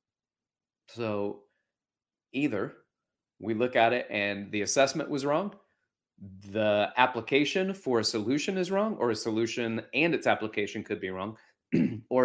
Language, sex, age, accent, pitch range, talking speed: English, male, 30-49, American, 105-165 Hz, 135 wpm